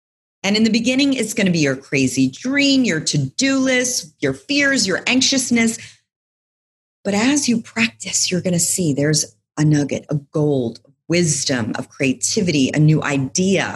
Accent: American